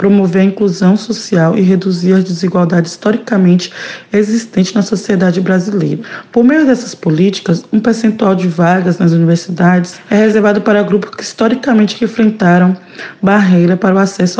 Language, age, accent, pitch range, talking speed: Portuguese, 20-39, Brazilian, 180-220 Hz, 140 wpm